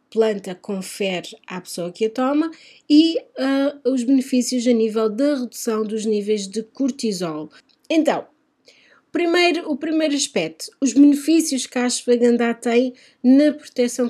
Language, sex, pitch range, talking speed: Portuguese, female, 220-285 Hz, 130 wpm